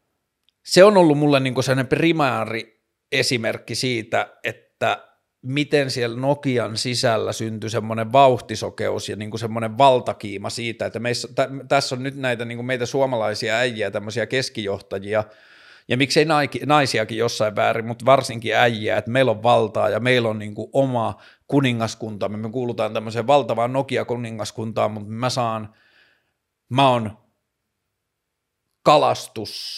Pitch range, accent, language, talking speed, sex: 110-135 Hz, native, Finnish, 135 wpm, male